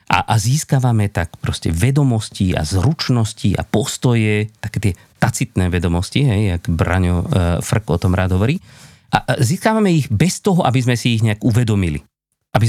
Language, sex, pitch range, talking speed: Slovak, male, 100-140 Hz, 150 wpm